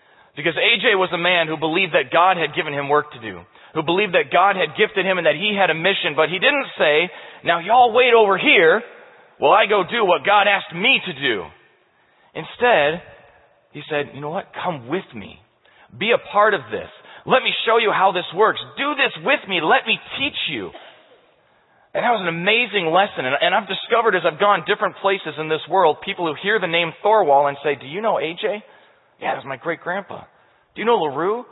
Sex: male